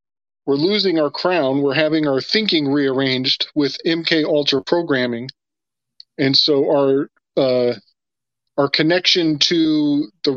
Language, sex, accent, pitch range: English, male, American, 135-170 Hz